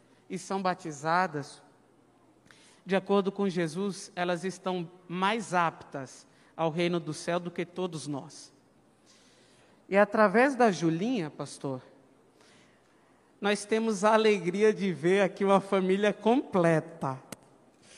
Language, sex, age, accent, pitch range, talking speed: Portuguese, male, 50-69, Brazilian, 175-220 Hz, 115 wpm